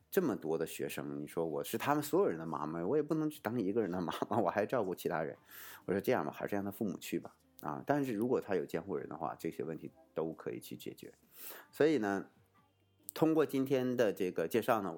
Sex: male